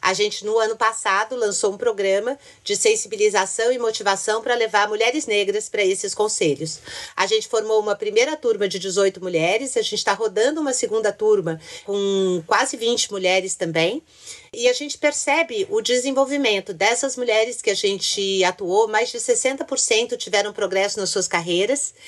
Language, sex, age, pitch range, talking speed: Portuguese, female, 40-59, 200-335 Hz, 165 wpm